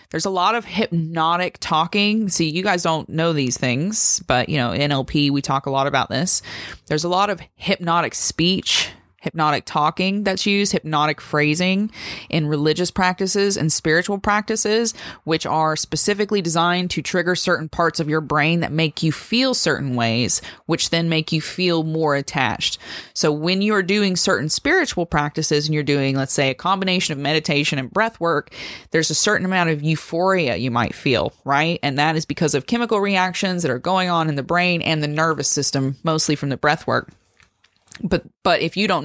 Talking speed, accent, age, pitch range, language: 185 wpm, American, 20-39, 150-185 Hz, English